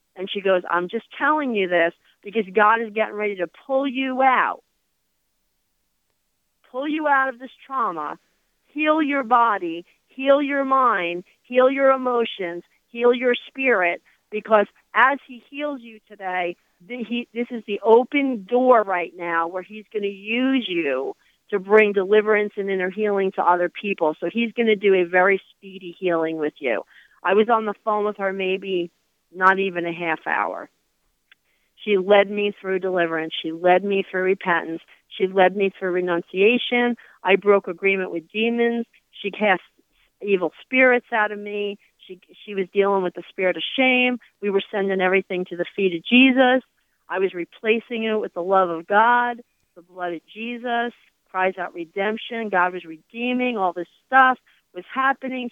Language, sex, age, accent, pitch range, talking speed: English, female, 40-59, American, 185-240 Hz, 170 wpm